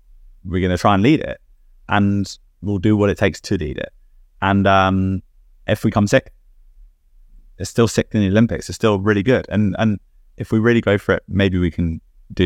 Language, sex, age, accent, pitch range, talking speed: English, male, 20-39, British, 85-115 Hz, 210 wpm